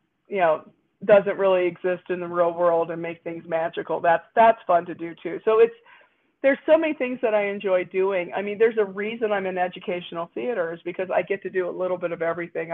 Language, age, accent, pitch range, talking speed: English, 40-59, American, 175-210 Hz, 230 wpm